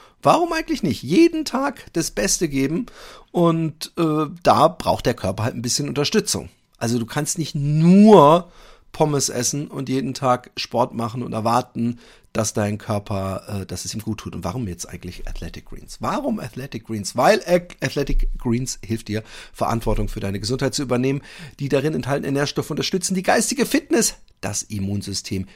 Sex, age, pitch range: male, 40-59, 110-155 Hz